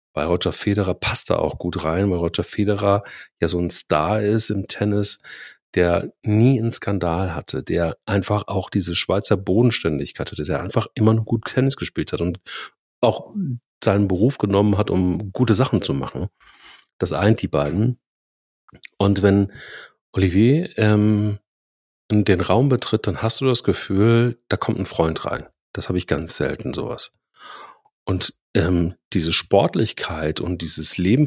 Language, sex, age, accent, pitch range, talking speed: German, male, 40-59, German, 90-110 Hz, 160 wpm